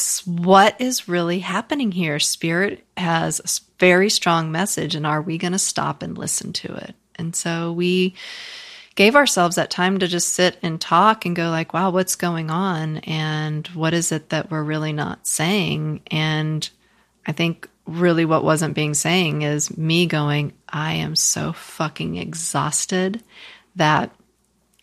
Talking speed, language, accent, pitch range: 160 wpm, English, American, 155-185 Hz